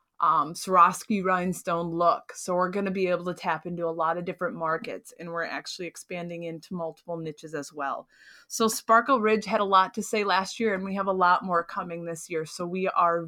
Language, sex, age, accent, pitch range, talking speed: English, female, 20-39, American, 175-205 Hz, 220 wpm